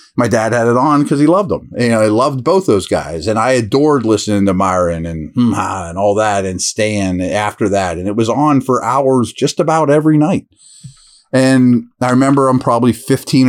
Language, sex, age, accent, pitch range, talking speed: English, male, 30-49, American, 110-135 Hz, 205 wpm